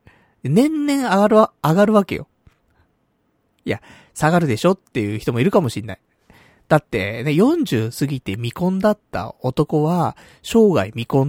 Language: Japanese